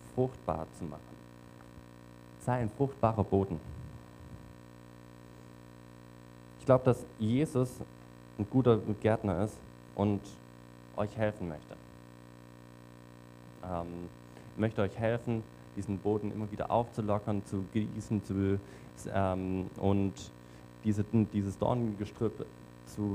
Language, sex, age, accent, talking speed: German, male, 20-39, German, 100 wpm